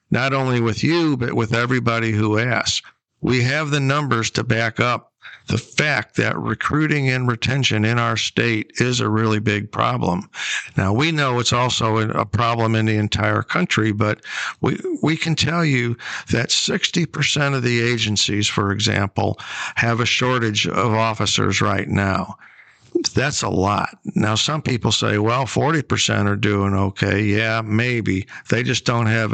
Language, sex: English, male